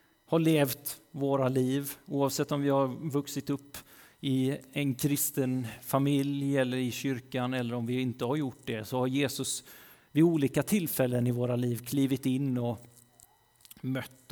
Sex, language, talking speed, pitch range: male, Swedish, 155 wpm, 120-145 Hz